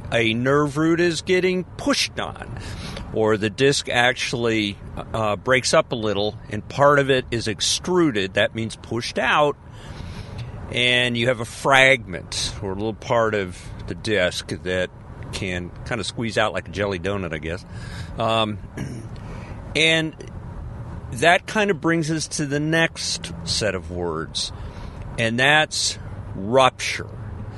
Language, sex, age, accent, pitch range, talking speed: English, male, 50-69, American, 100-140 Hz, 145 wpm